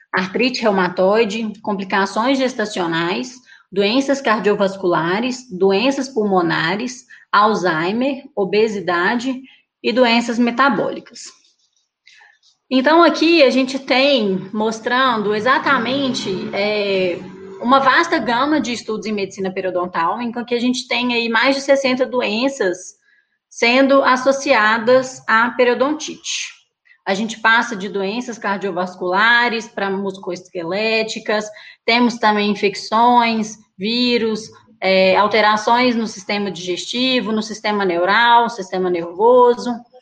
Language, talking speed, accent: English, 95 wpm, Brazilian